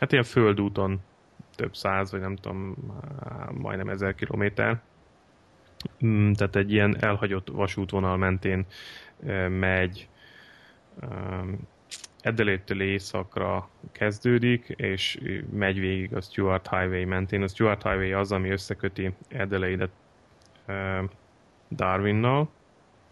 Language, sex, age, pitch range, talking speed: Hungarian, male, 30-49, 95-105 Hz, 95 wpm